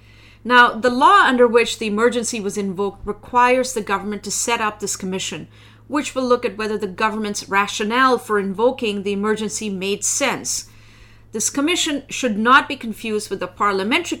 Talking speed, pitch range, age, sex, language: 170 wpm, 190-240 Hz, 40-59, female, English